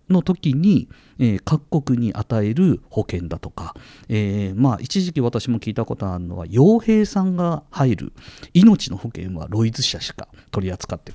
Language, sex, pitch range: Japanese, male, 95-130 Hz